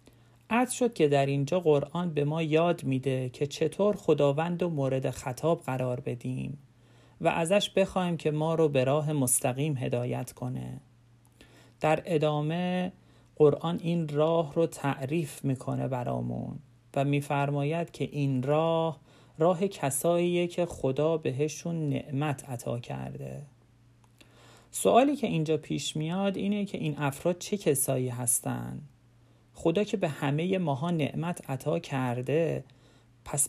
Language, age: Persian, 40-59